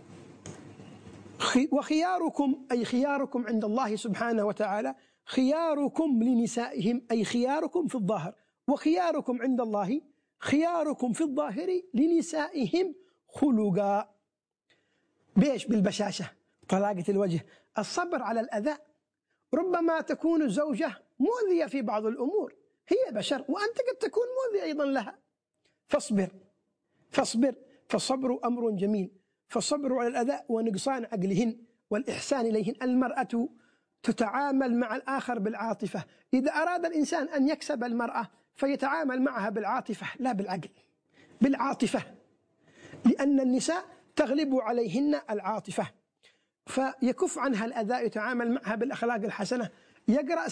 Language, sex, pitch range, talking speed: Arabic, male, 225-295 Hz, 100 wpm